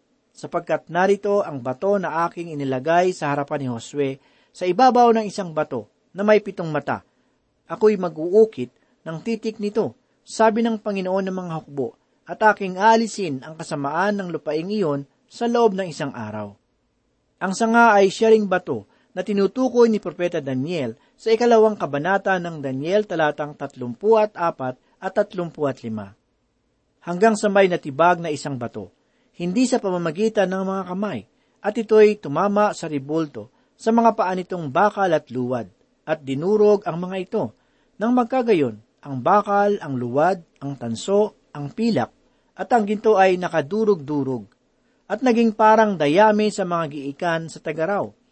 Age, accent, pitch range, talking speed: 40-59, native, 150-215 Hz, 145 wpm